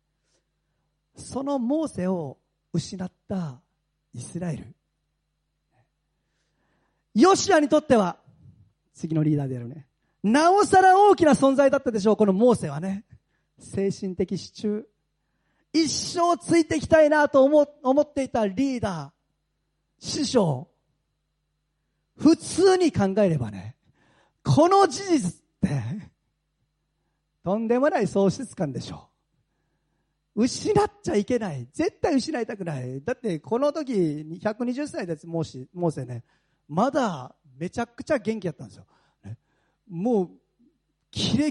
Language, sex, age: Japanese, male, 40-59